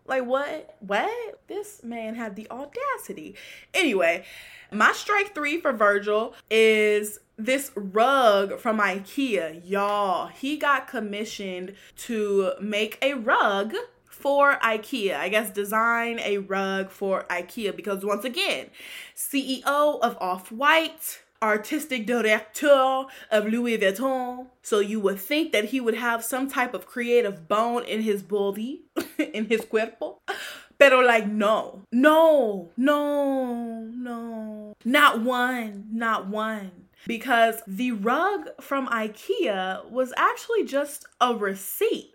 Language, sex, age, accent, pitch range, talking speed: English, female, 20-39, American, 210-280 Hz, 120 wpm